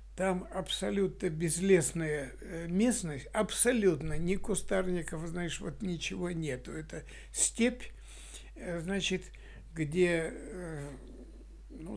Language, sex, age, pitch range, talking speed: Russian, male, 60-79, 145-190 Hz, 80 wpm